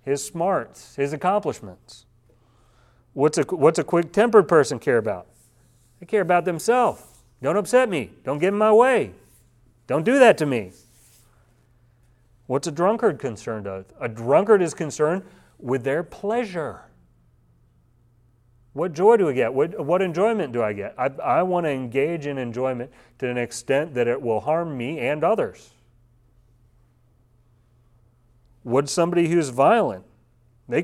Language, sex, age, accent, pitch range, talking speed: English, male, 40-59, American, 120-150 Hz, 140 wpm